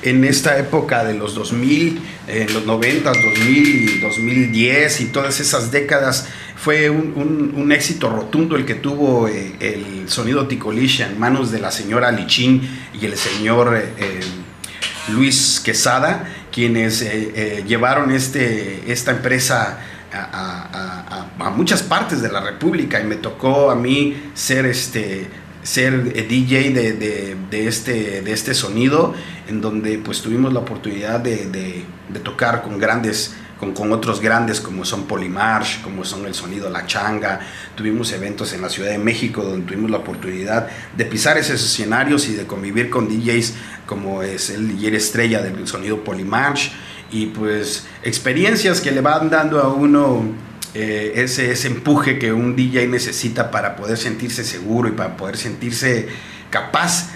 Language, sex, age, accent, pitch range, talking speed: Spanish, male, 40-59, Mexican, 105-135 Hz, 160 wpm